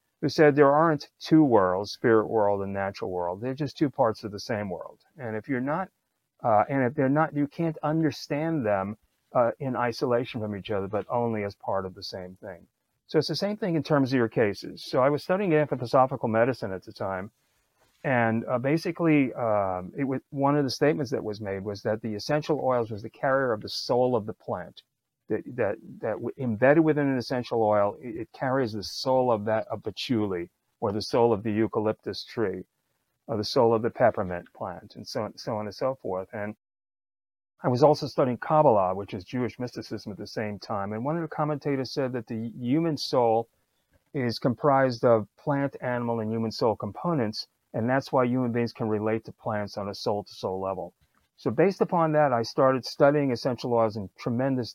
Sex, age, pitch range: male, 40-59, 105-145 Hz